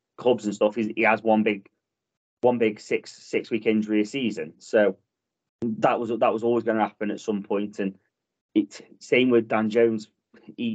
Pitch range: 105-125 Hz